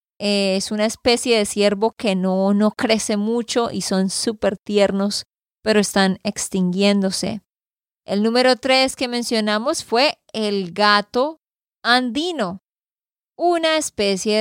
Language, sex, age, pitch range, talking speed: Spanish, female, 20-39, 205-245 Hz, 115 wpm